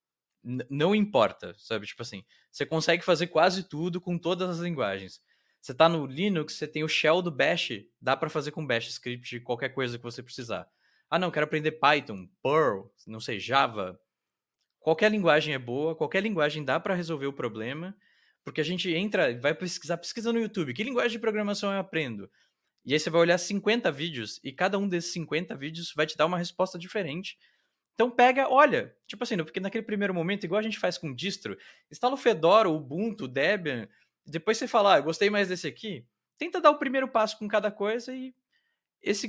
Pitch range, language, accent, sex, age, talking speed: 155-210 Hz, Portuguese, Brazilian, male, 20-39, 200 wpm